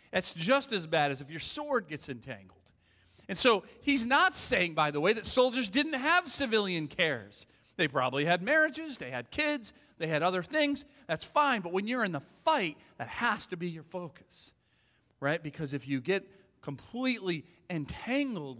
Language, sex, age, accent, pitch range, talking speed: English, male, 40-59, American, 130-215 Hz, 180 wpm